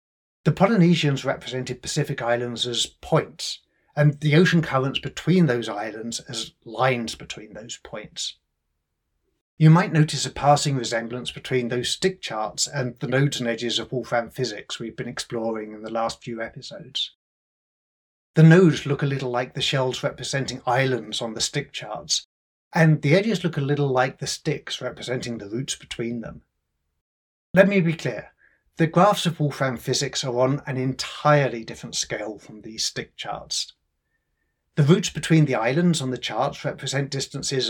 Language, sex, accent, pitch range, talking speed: English, male, British, 120-150 Hz, 160 wpm